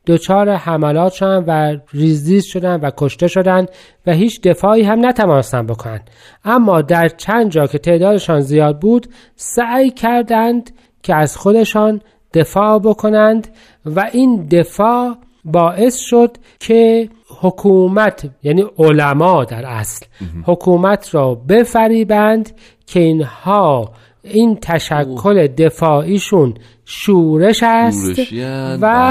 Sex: male